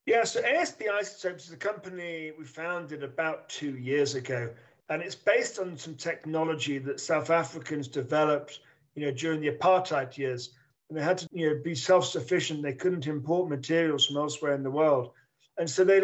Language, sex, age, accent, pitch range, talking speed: English, male, 50-69, British, 145-170 Hz, 185 wpm